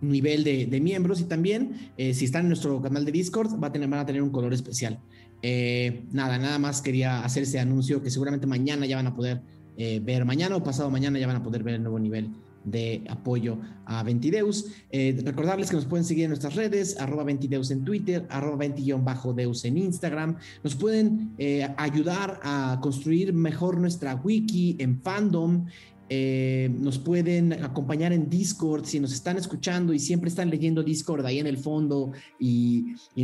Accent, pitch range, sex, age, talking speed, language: Mexican, 125-160 Hz, male, 30-49, 190 wpm, Spanish